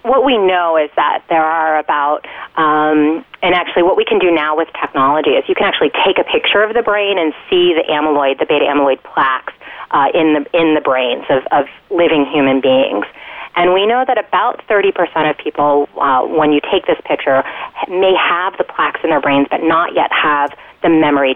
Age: 30-49